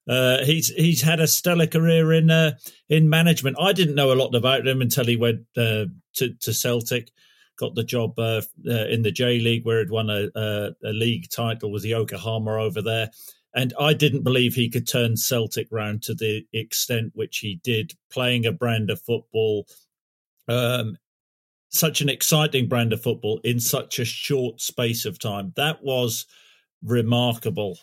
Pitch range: 115-140 Hz